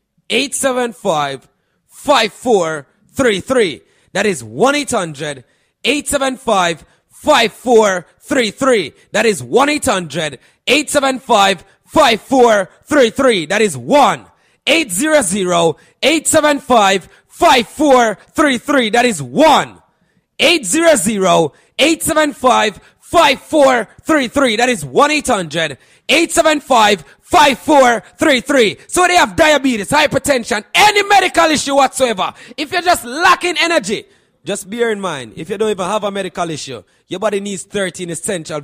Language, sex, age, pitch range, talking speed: English, male, 30-49, 185-295 Hz, 130 wpm